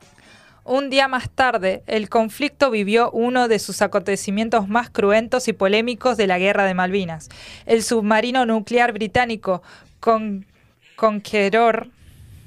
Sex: female